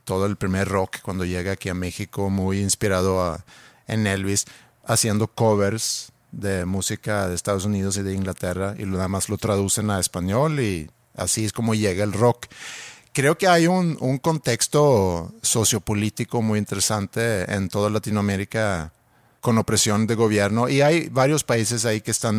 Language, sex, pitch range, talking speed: Spanish, male, 95-120 Hz, 160 wpm